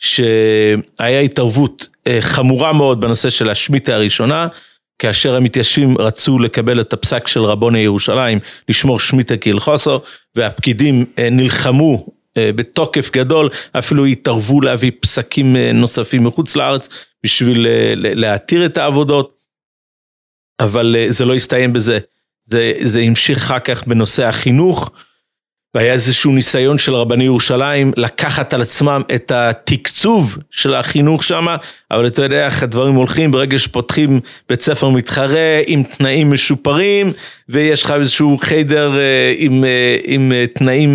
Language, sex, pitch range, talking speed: Hebrew, male, 120-145 Hz, 125 wpm